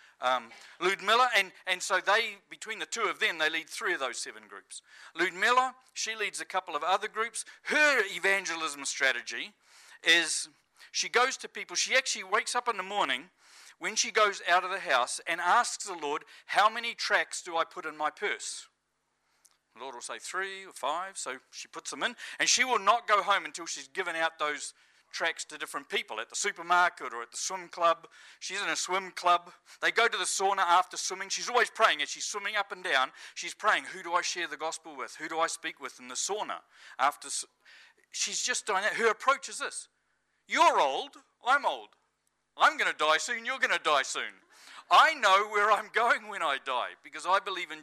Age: 50-69